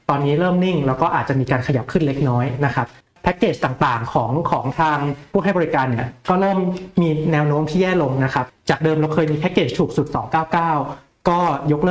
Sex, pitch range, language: male, 135-170 Hz, Thai